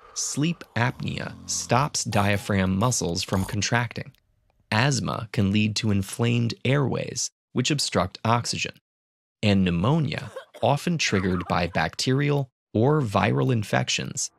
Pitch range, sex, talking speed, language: 100-135 Hz, male, 105 wpm, English